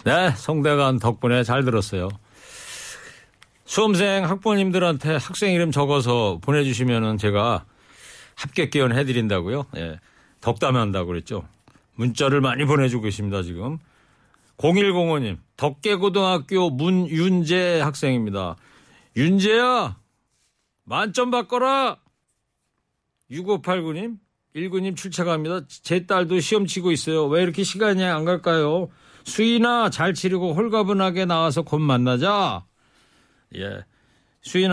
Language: Korean